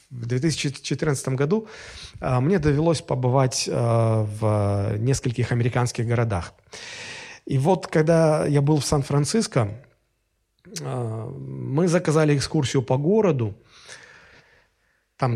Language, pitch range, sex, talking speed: Russian, 115-150 Hz, male, 90 wpm